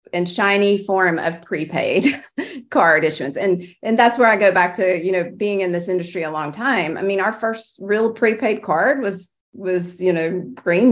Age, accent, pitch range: 30-49, American, 170-205 Hz